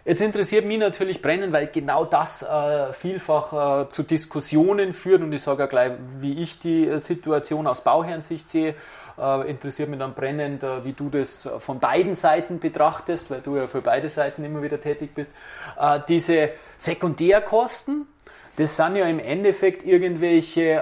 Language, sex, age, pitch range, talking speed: German, male, 30-49, 150-180 Hz, 165 wpm